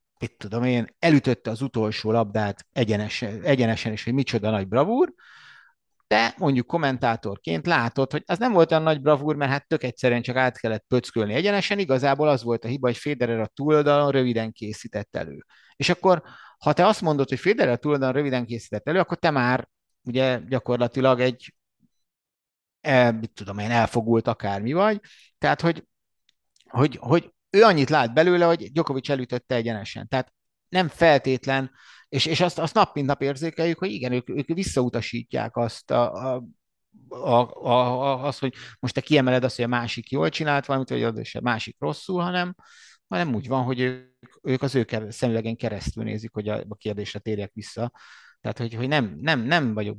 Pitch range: 115-145 Hz